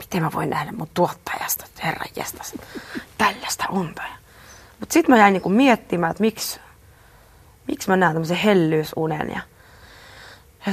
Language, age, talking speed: Finnish, 30-49, 140 wpm